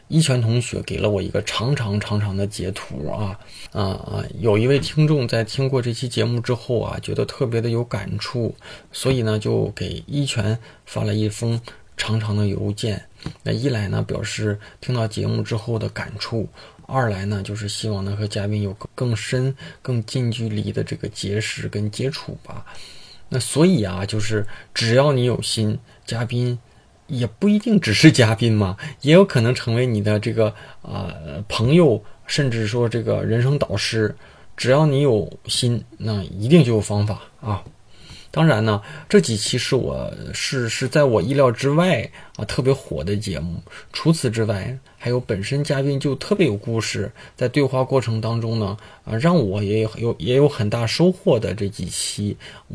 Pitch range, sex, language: 105-130 Hz, male, Chinese